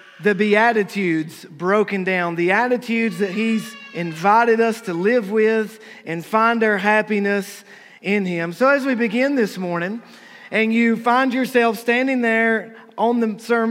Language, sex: English, male